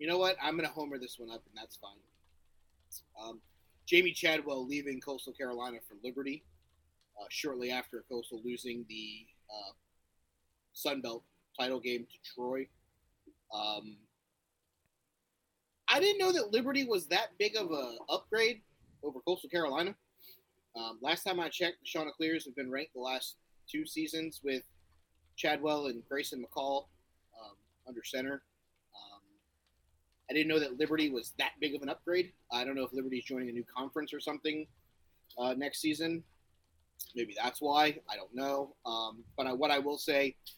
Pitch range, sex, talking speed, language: 115-150 Hz, male, 165 wpm, English